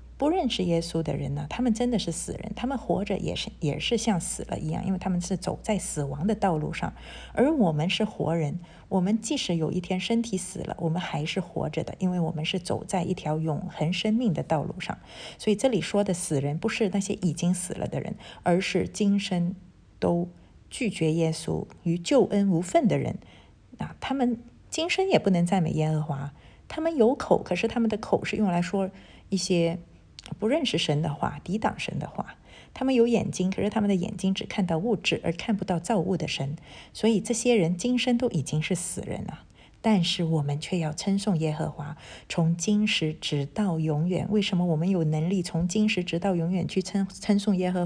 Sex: female